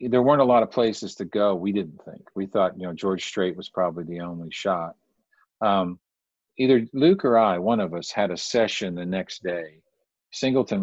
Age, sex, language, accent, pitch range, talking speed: 50-69, male, English, American, 90-110 Hz, 205 wpm